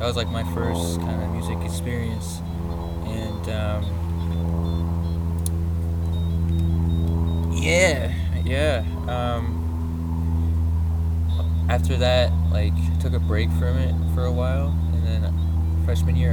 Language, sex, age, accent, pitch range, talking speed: English, male, 20-39, American, 80-90 Hz, 105 wpm